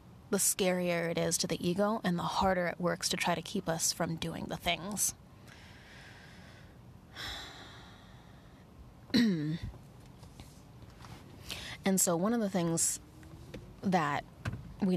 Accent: American